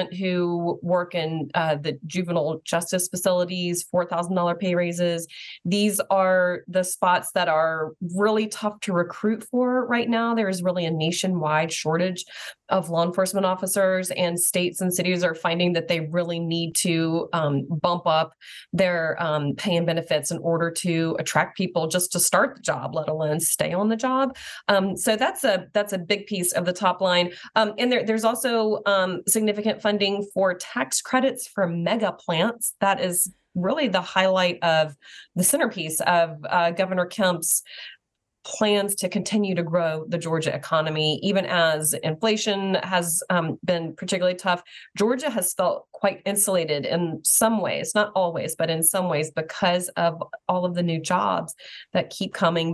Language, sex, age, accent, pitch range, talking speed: English, female, 30-49, American, 165-195 Hz, 165 wpm